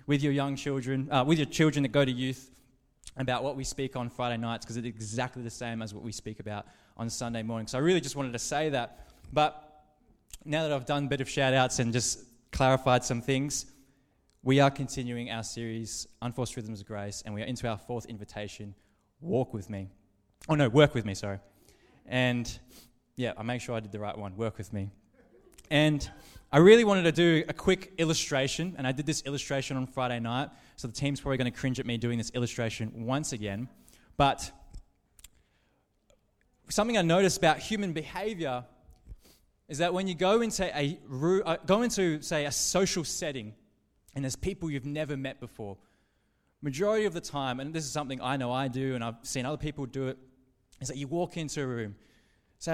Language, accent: English, Australian